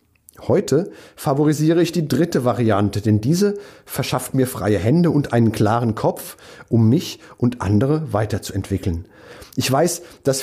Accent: German